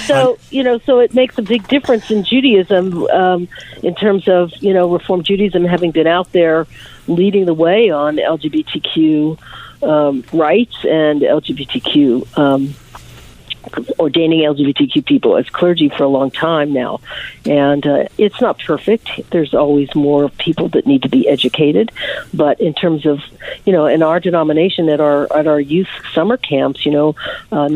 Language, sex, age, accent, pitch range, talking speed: English, female, 50-69, American, 150-190 Hz, 165 wpm